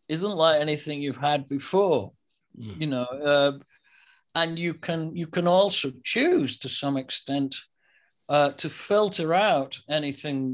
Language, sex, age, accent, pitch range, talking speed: English, male, 50-69, British, 125-160 Hz, 135 wpm